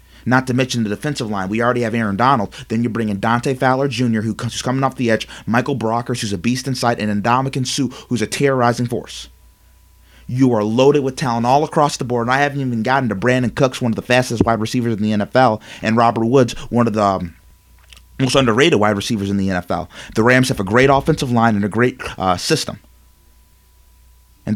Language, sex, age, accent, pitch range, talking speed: English, male, 30-49, American, 95-130 Hz, 215 wpm